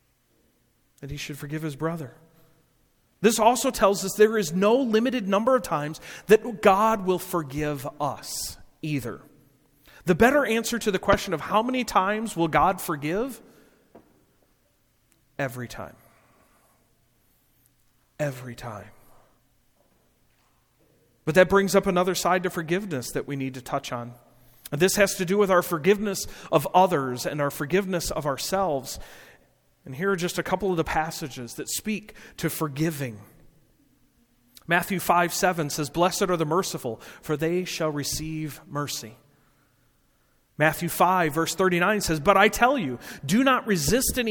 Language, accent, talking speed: English, American, 145 wpm